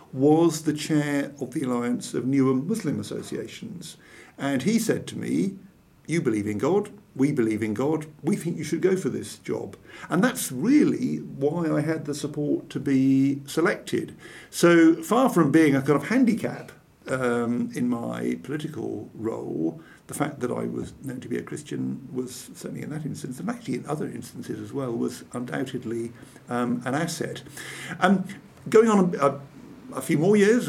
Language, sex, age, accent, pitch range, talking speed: English, male, 50-69, British, 125-160 Hz, 180 wpm